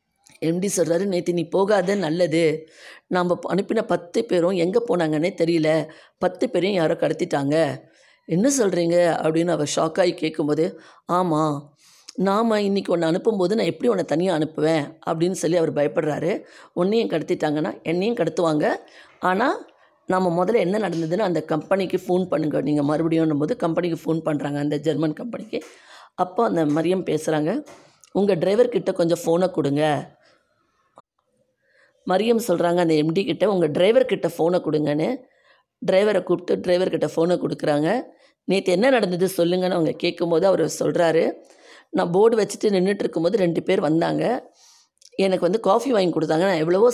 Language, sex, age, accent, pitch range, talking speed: Tamil, female, 20-39, native, 160-200 Hz, 135 wpm